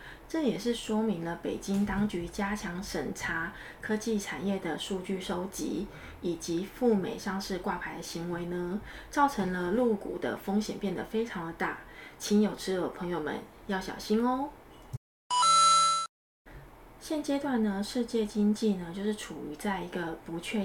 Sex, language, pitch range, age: female, Chinese, 175-215 Hz, 20-39